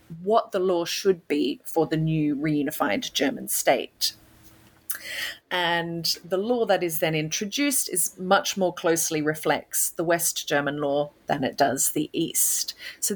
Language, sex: English, female